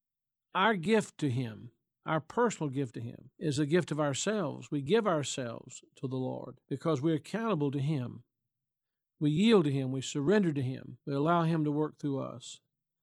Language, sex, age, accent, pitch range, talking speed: English, male, 50-69, American, 140-175 Hz, 185 wpm